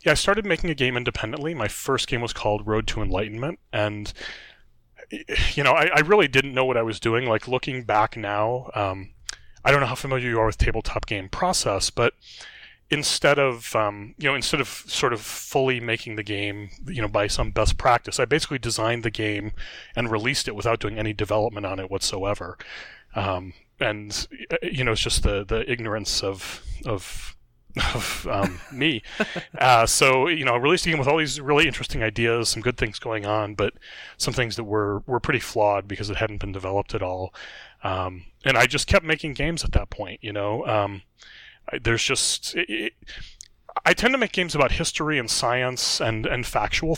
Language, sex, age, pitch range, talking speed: English, male, 30-49, 100-130 Hz, 200 wpm